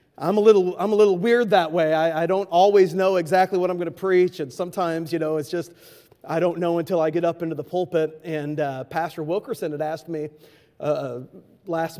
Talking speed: 225 wpm